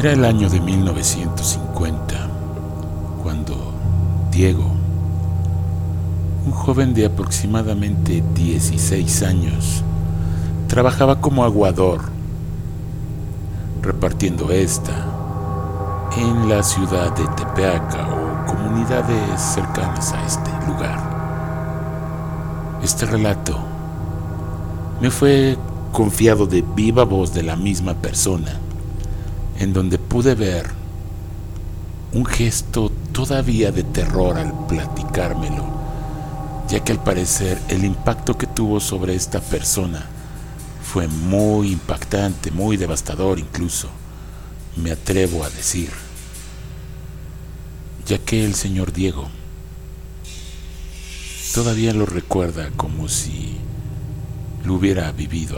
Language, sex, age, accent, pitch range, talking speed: Spanish, male, 60-79, Mexican, 85-110 Hz, 95 wpm